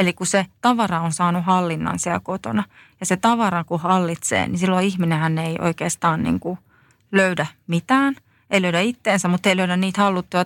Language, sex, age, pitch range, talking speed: Finnish, female, 30-49, 170-205 Hz, 170 wpm